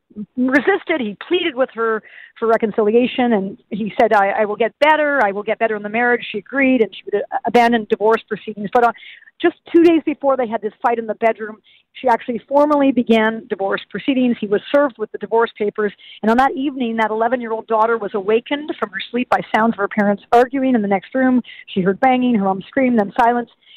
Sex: female